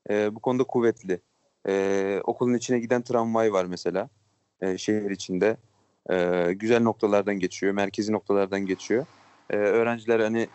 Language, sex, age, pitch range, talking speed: Turkish, male, 30-49, 105-120 Hz, 135 wpm